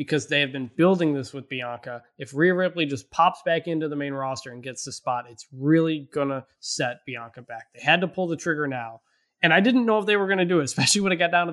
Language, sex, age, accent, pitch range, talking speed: English, male, 20-39, American, 140-185 Hz, 275 wpm